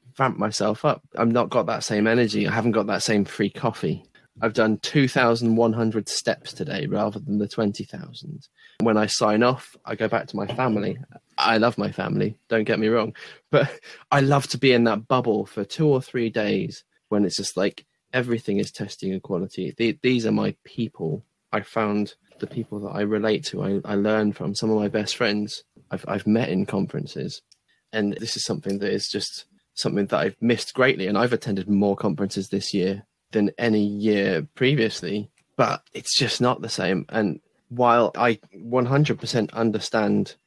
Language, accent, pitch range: English, British, 105-120 Hz